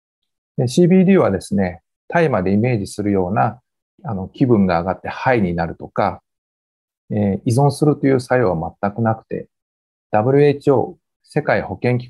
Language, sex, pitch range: Japanese, male, 95-150 Hz